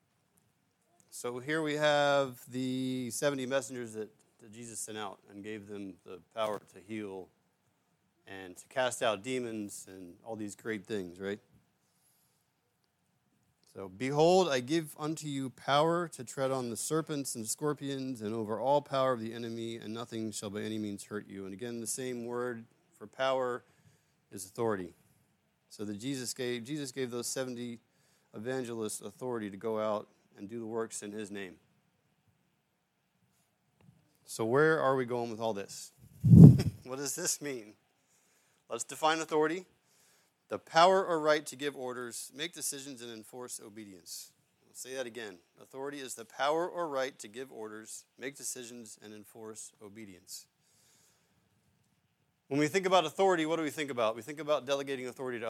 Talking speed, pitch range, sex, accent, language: 160 wpm, 110-140 Hz, male, American, English